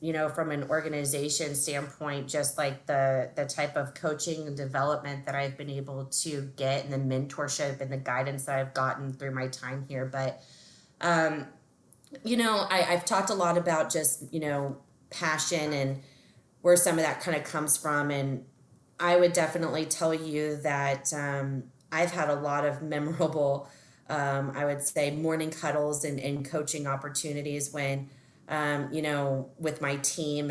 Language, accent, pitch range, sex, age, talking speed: English, American, 135-155 Hz, female, 20-39, 175 wpm